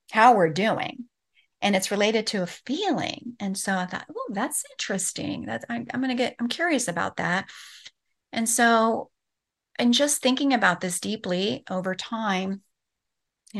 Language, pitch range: English, 180-220 Hz